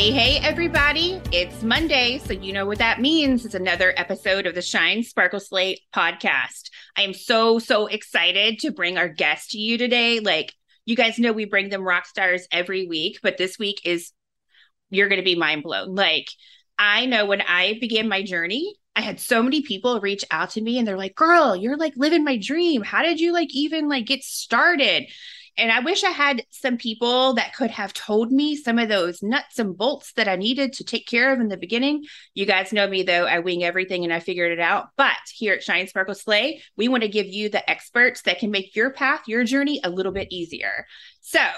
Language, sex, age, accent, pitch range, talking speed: English, female, 30-49, American, 195-270 Hz, 220 wpm